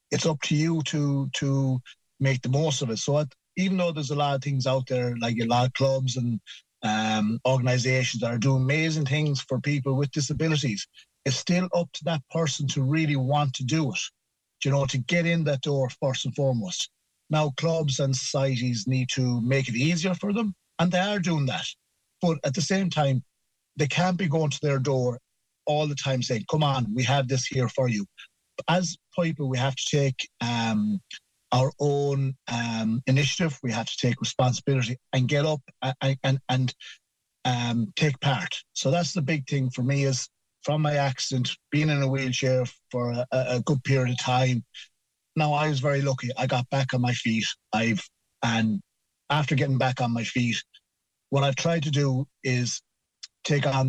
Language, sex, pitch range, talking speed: English, male, 125-150 Hz, 195 wpm